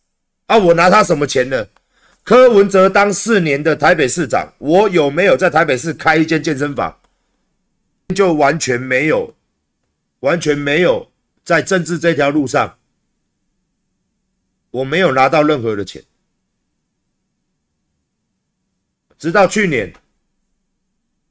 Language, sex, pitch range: Chinese, male, 150-205 Hz